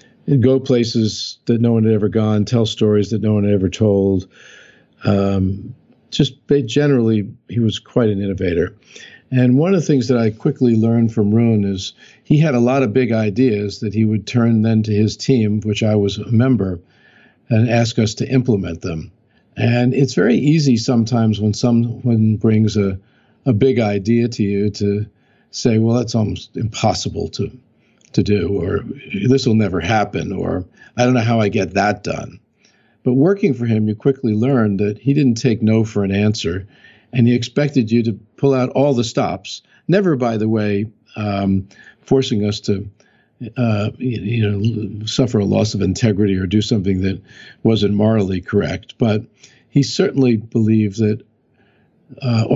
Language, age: English, 50-69